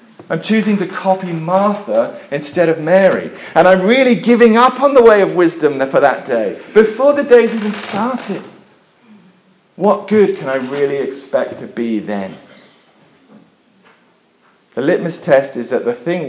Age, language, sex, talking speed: 40-59, English, male, 155 wpm